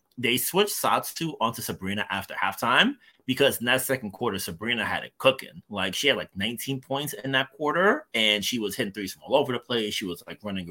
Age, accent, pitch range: 30-49, American, 95-120 Hz